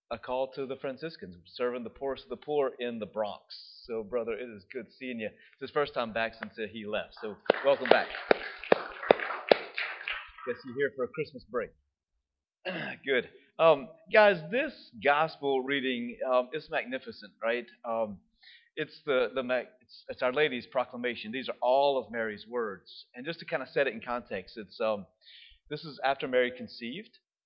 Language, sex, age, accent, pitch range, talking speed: English, male, 30-49, American, 115-155 Hz, 175 wpm